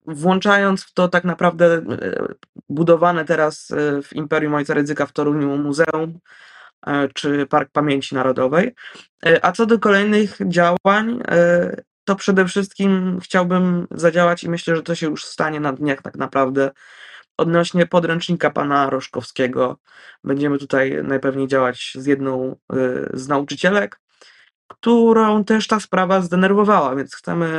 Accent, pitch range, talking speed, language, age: native, 145-185 Hz, 125 wpm, Polish, 20-39